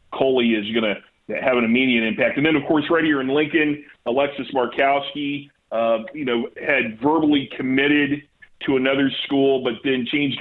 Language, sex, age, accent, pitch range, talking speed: English, male, 40-59, American, 120-140 Hz, 175 wpm